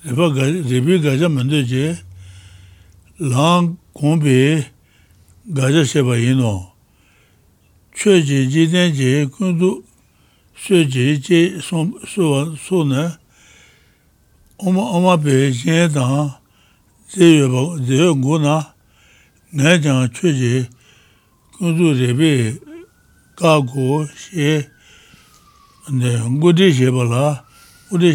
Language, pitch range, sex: English, 125-165 Hz, male